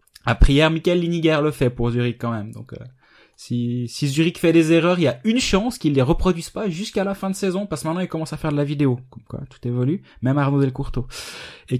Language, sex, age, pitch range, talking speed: French, male, 20-39, 115-145 Hz, 255 wpm